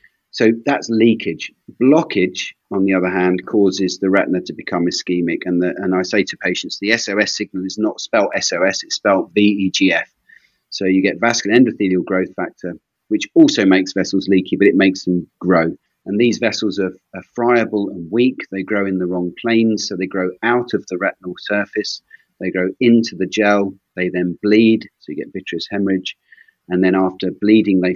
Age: 30-49